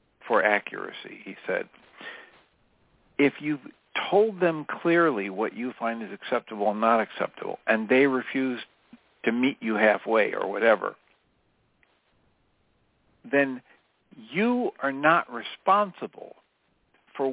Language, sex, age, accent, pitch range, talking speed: English, male, 60-79, American, 115-180 Hz, 110 wpm